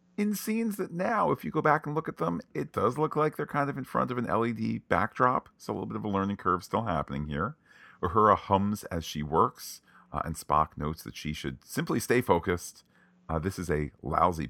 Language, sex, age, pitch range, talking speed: English, male, 40-59, 75-95 Hz, 230 wpm